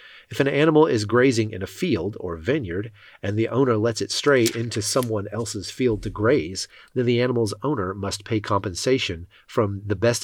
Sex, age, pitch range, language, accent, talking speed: male, 40-59, 100-120 Hz, English, American, 190 wpm